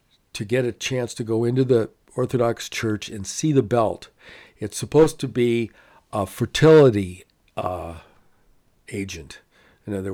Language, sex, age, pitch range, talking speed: English, male, 50-69, 100-120 Hz, 140 wpm